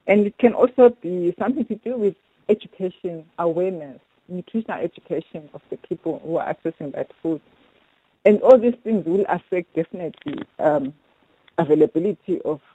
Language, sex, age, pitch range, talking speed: English, female, 60-79, 155-205 Hz, 145 wpm